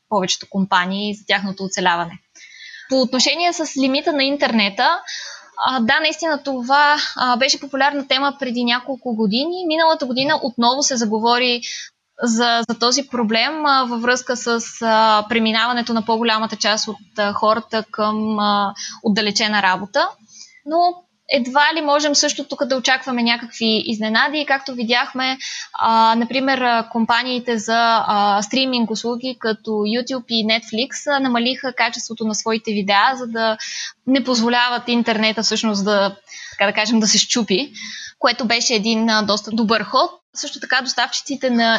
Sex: female